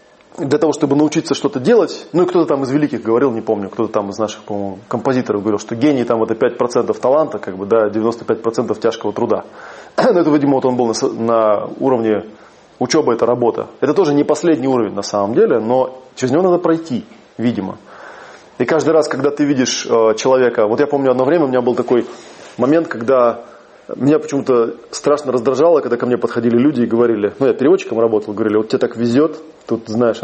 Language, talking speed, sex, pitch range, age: Russian, 200 wpm, male, 110-140 Hz, 20-39